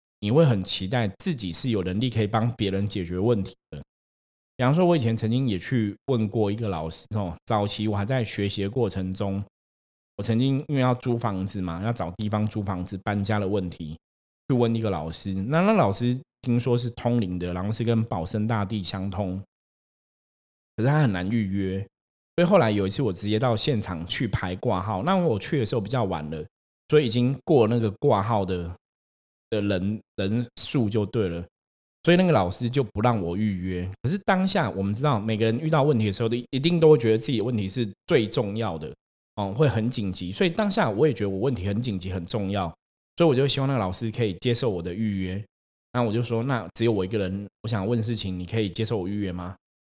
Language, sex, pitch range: Chinese, male, 95-125 Hz